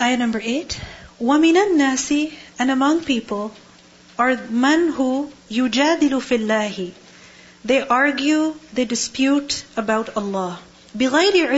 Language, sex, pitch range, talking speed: English, female, 210-280 Hz, 100 wpm